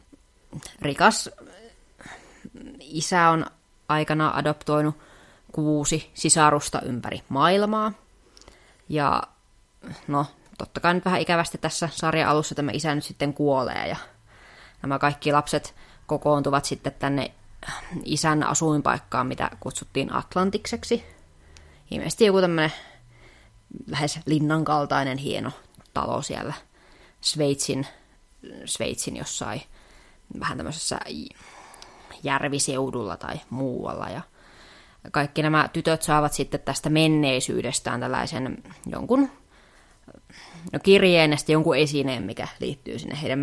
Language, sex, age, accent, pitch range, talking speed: Finnish, female, 20-39, native, 140-165 Hz, 100 wpm